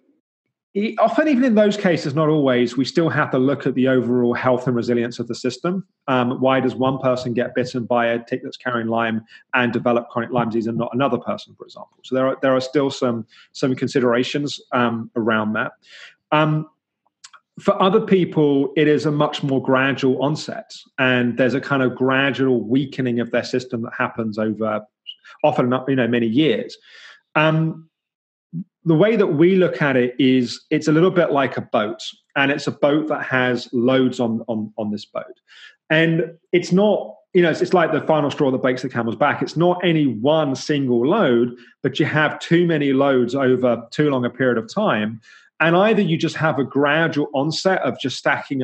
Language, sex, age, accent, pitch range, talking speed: English, male, 30-49, British, 125-155 Hz, 195 wpm